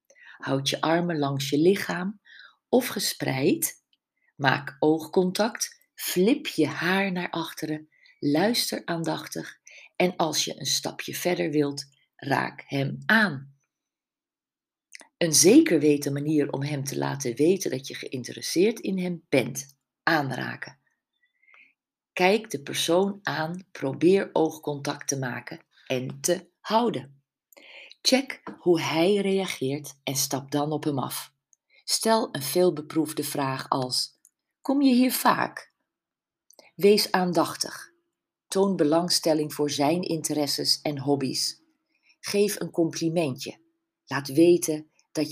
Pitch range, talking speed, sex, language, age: 145-195 Hz, 115 wpm, female, Dutch, 50-69